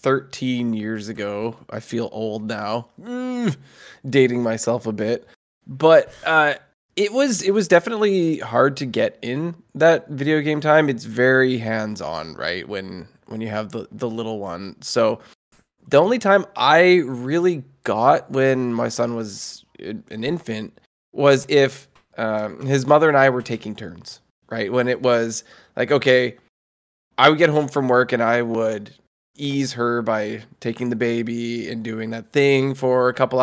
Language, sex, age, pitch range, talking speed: English, male, 20-39, 115-140 Hz, 165 wpm